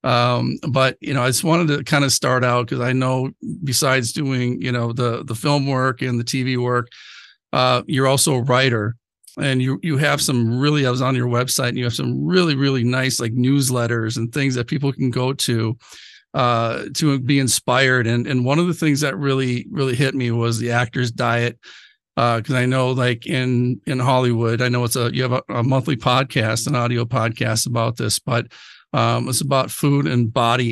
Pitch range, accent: 120-130 Hz, American